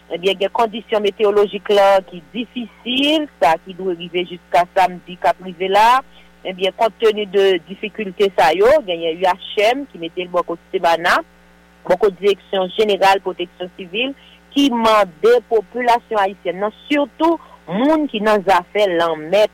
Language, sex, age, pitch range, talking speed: English, female, 50-69, 180-245 Hz, 140 wpm